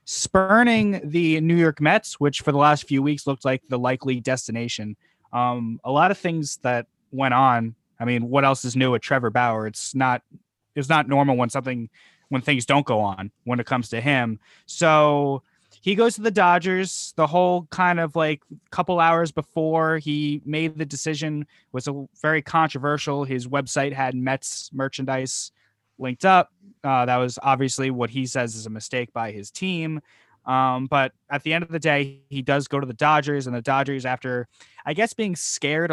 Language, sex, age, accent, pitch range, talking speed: English, male, 20-39, American, 125-150 Hz, 190 wpm